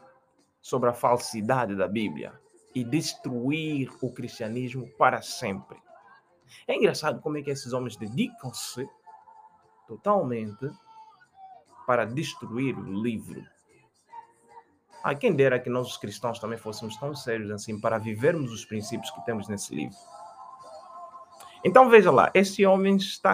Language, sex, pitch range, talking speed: Portuguese, male, 115-155 Hz, 130 wpm